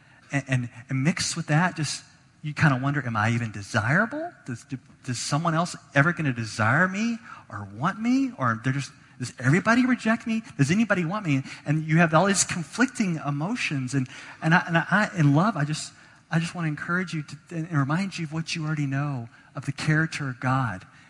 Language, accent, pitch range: English, American, 135-165 Hz